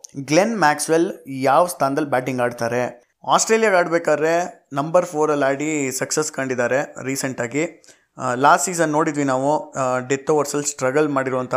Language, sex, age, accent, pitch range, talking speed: Kannada, male, 20-39, native, 135-155 Hz, 115 wpm